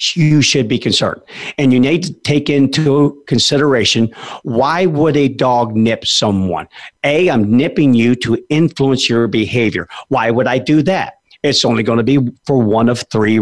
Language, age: English, 50-69